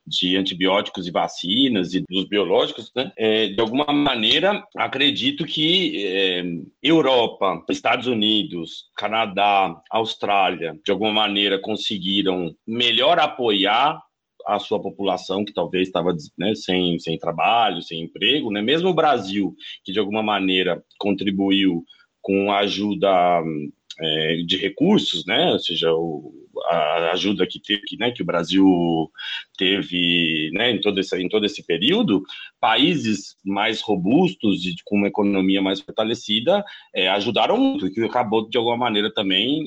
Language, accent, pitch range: Portuguese, Brazilian, 95-130 Hz